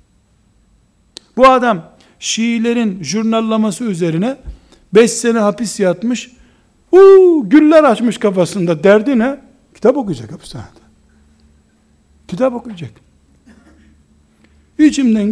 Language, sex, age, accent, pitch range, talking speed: Turkish, male, 60-79, native, 140-225 Hz, 80 wpm